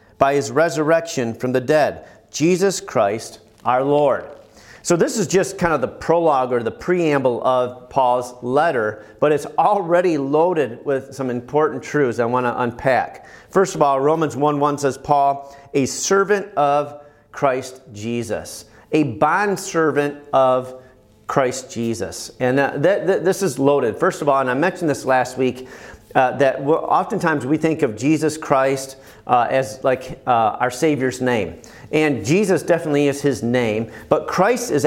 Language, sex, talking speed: English, male, 160 wpm